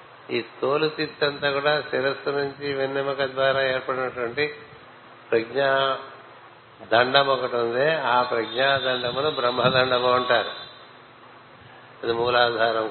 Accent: native